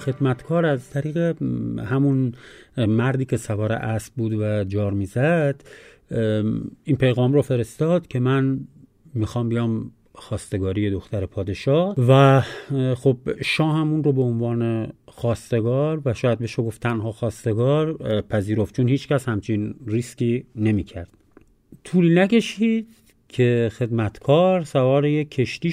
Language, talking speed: Persian, 120 wpm